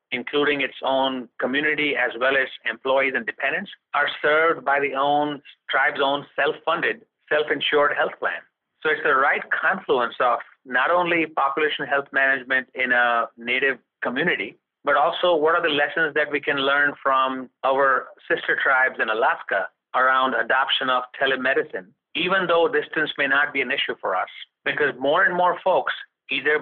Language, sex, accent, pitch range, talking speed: English, male, Indian, 130-155 Hz, 160 wpm